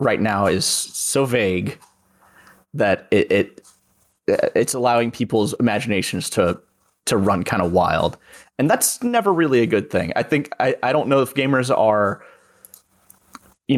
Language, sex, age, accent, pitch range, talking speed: English, male, 20-39, American, 100-135 Hz, 155 wpm